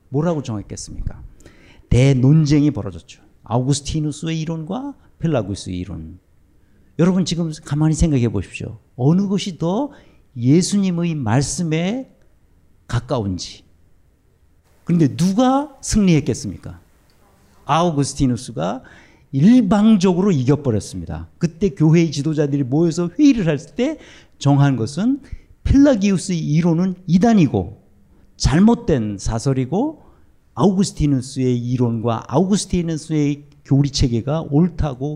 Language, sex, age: Korean, male, 50-69